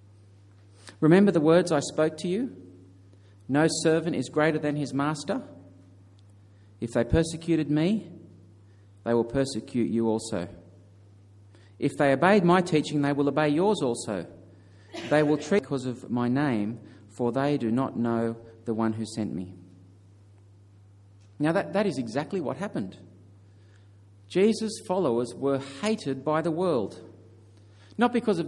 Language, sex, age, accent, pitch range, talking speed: English, male, 40-59, Australian, 100-160 Hz, 145 wpm